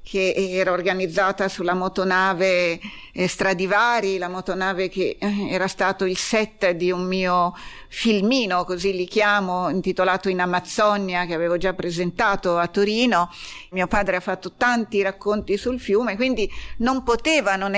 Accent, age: native, 50-69